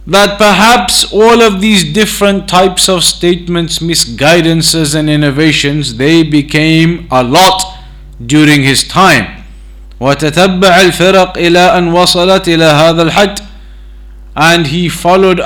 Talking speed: 80 wpm